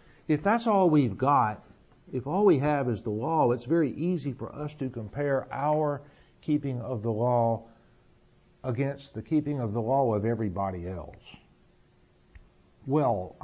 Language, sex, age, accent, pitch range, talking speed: English, male, 60-79, American, 115-155 Hz, 150 wpm